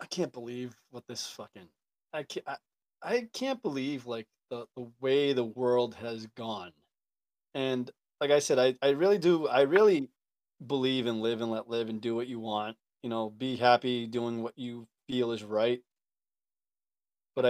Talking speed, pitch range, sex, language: 180 wpm, 120-145 Hz, male, English